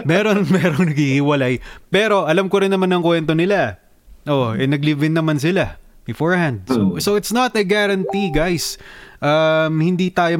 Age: 20-39